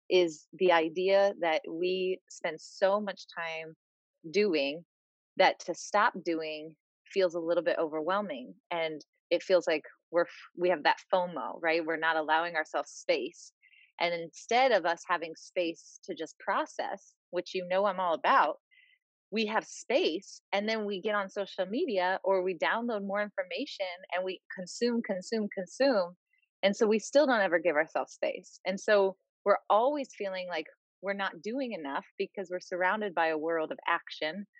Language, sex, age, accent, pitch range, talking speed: English, female, 20-39, American, 170-210 Hz, 165 wpm